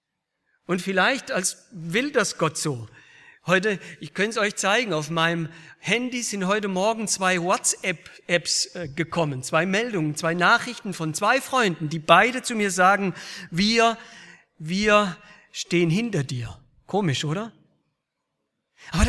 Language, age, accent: German, 50-69, German